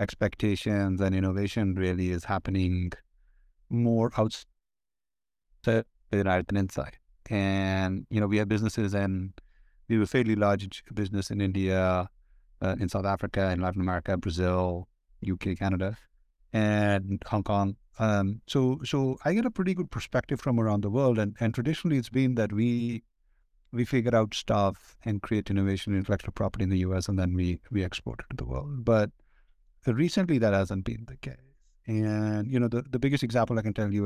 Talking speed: 175 wpm